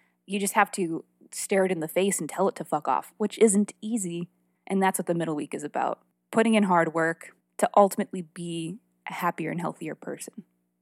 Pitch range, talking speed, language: 165-205 Hz, 210 wpm, English